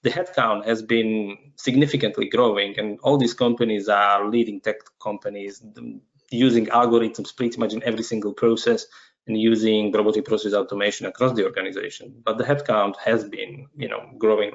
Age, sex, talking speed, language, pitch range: 20-39, male, 155 wpm, English, 110-130 Hz